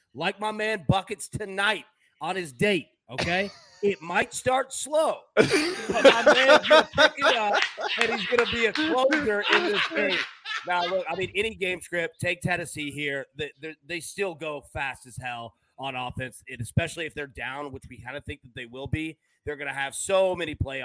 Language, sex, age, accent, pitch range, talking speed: English, male, 30-49, American, 130-185 Hz, 195 wpm